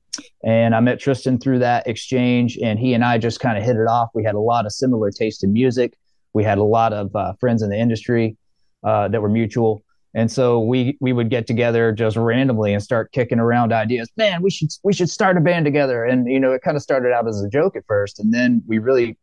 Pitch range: 105-130 Hz